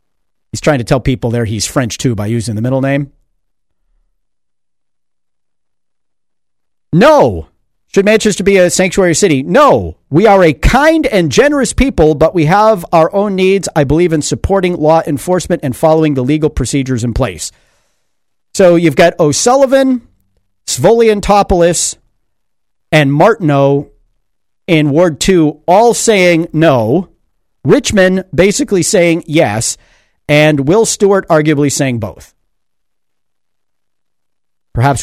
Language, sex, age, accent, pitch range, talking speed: English, male, 50-69, American, 125-180 Hz, 125 wpm